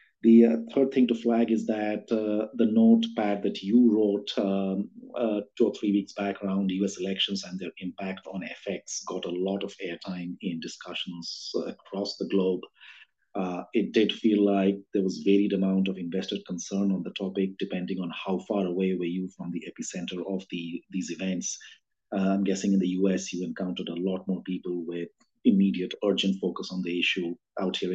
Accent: Indian